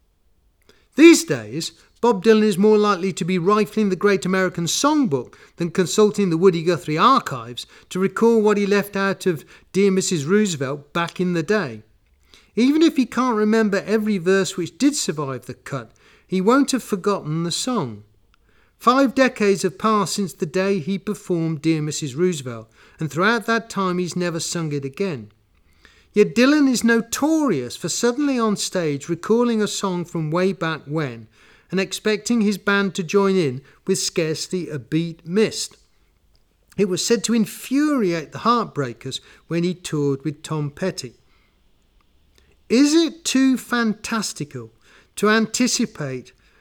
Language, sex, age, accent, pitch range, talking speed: English, male, 40-59, British, 155-225 Hz, 155 wpm